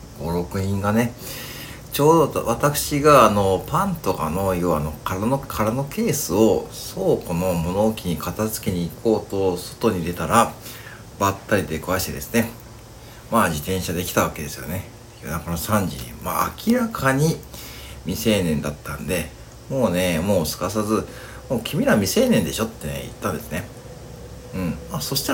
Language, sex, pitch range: Japanese, male, 85-120 Hz